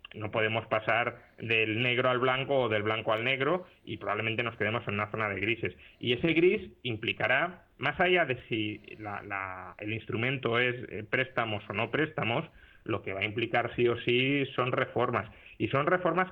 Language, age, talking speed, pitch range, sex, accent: Spanish, 30-49, 180 wpm, 105-130 Hz, male, Spanish